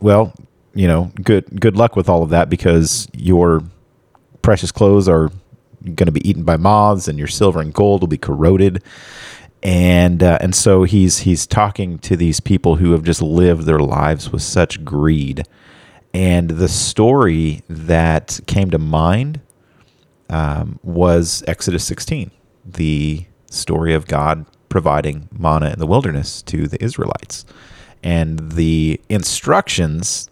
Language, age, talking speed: English, 30-49, 145 wpm